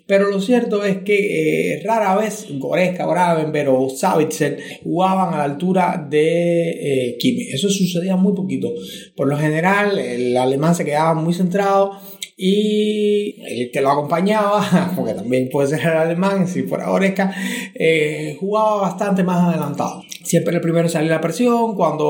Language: Spanish